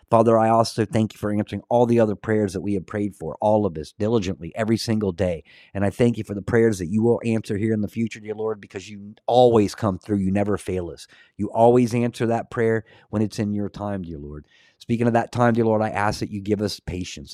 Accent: American